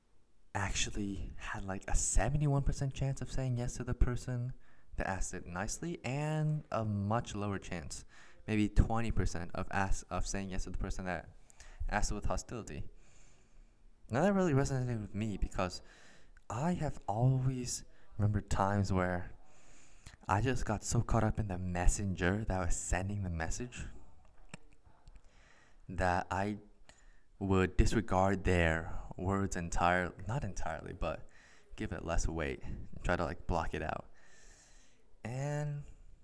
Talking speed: 140 wpm